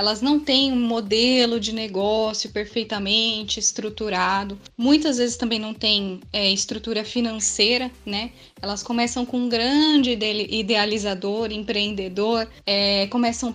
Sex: female